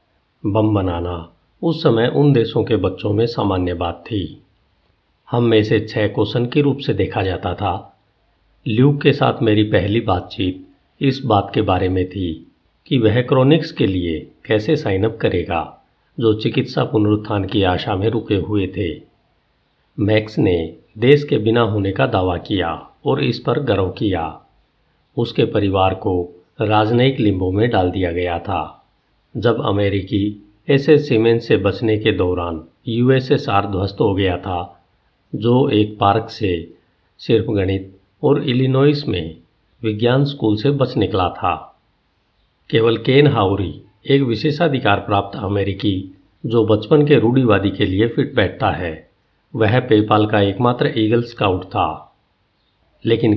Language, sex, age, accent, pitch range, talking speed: Hindi, male, 50-69, native, 95-120 Hz, 145 wpm